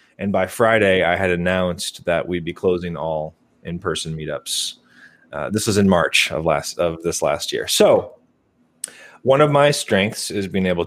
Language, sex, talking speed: English, male, 175 wpm